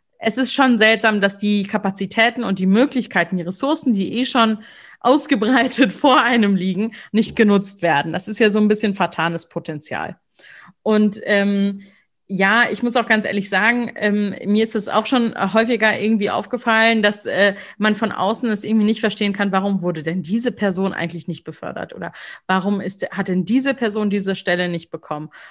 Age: 30-49